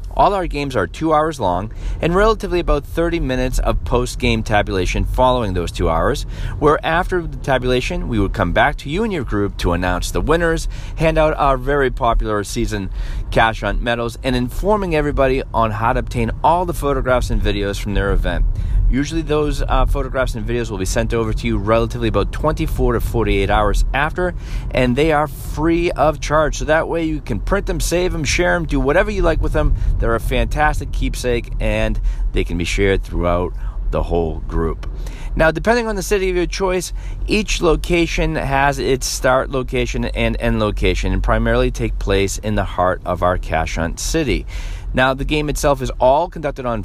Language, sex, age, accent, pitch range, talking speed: English, male, 30-49, American, 95-150 Hz, 195 wpm